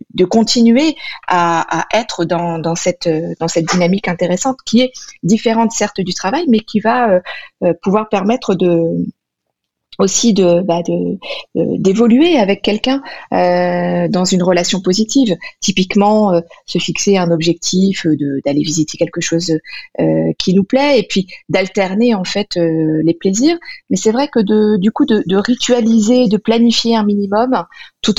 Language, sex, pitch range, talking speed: French, female, 175-220 Hz, 160 wpm